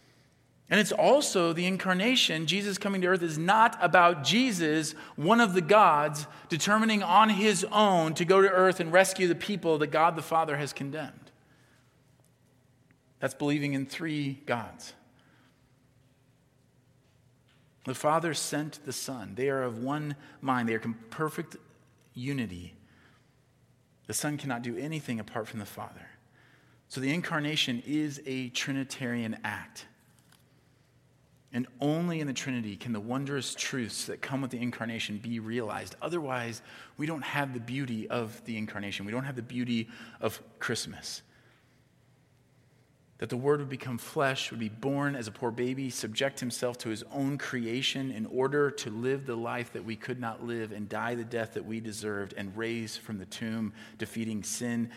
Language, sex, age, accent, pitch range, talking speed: English, male, 40-59, American, 115-150 Hz, 160 wpm